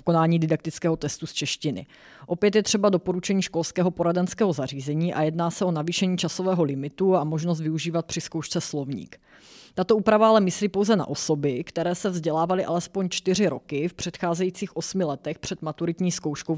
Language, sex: Czech, female